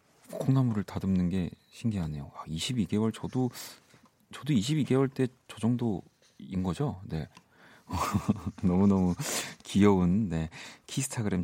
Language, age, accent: Korean, 40-59, native